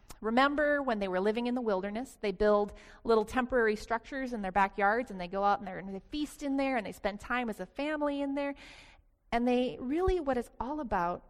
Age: 30-49